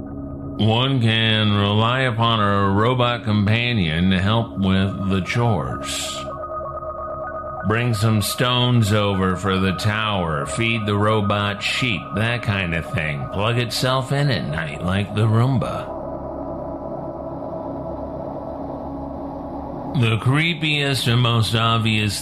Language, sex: English, male